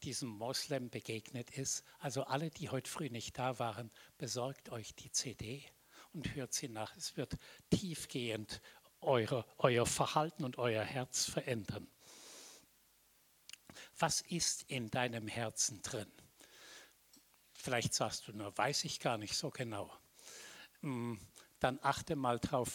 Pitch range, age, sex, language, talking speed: 115-140 Hz, 60-79, male, German, 130 wpm